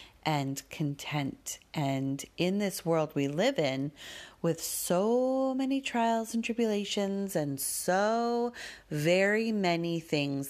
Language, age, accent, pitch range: English, 30-49, American, 140-180 Hz